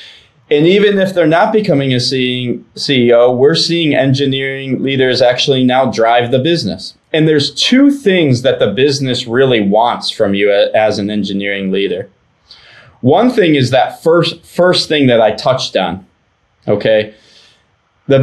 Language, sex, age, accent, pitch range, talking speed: English, male, 20-39, American, 120-165 Hz, 150 wpm